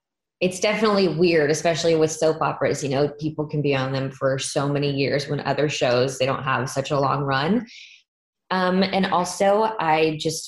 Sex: female